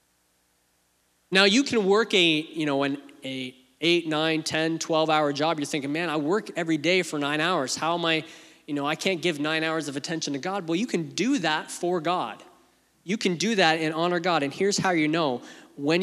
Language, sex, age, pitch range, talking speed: English, male, 20-39, 150-185 Hz, 220 wpm